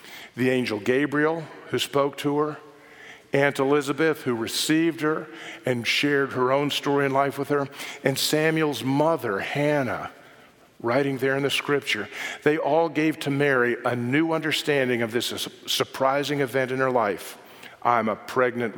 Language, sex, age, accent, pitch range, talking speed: English, male, 50-69, American, 125-150 Hz, 155 wpm